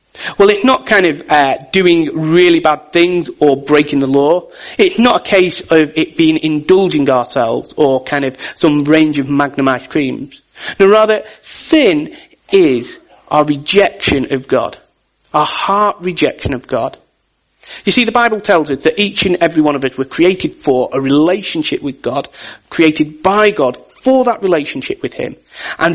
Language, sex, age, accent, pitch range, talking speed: English, male, 40-59, British, 145-205 Hz, 170 wpm